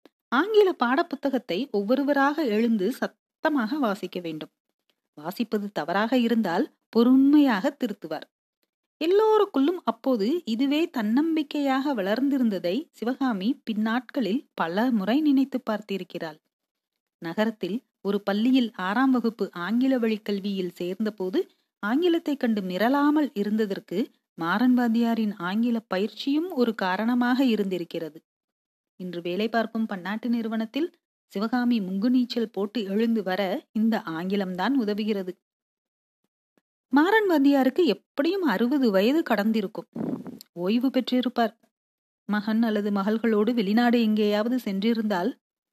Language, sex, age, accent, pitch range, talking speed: Tamil, female, 40-59, native, 210-275 Hz, 90 wpm